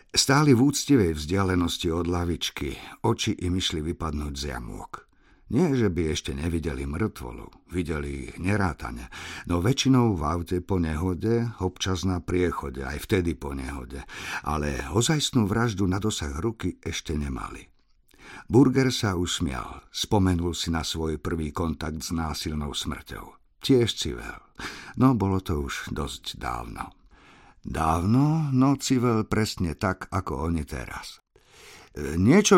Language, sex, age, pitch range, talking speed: Slovak, male, 50-69, 80-120 Hz, 130 wpm